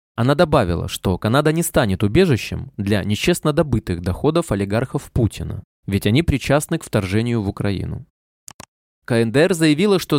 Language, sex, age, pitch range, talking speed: Russian, male, 20-39, 105-150 Hz, 135 wpm